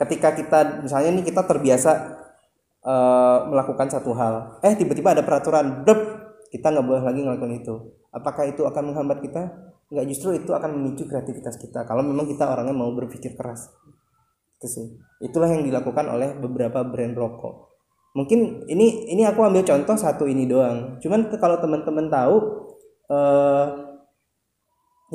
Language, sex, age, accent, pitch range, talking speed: Indonesian, male, 20-39, native, 120-155 Hz, 155 wpm